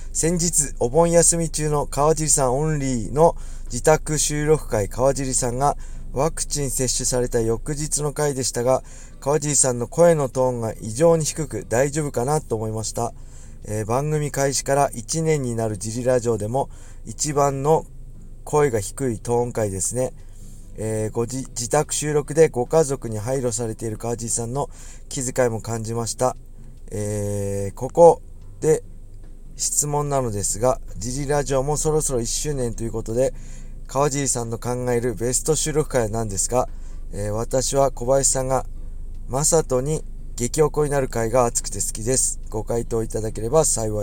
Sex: male